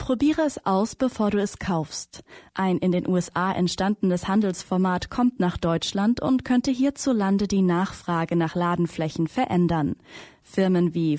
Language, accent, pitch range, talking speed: German, German, 180-240 Hz, 140 wpm